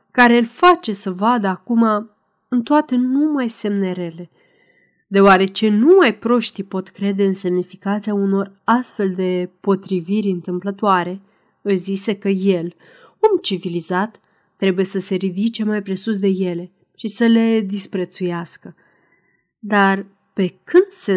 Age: 30-49